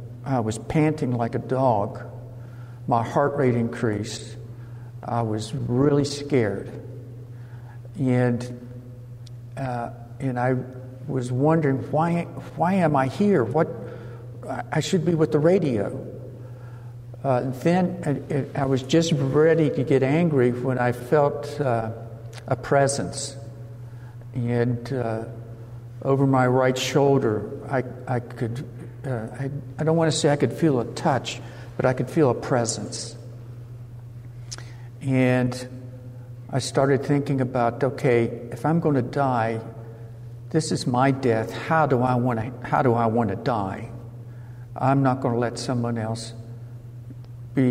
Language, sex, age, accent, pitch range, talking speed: English, male, 60-79, American, 120-135 Hz, 130 wpm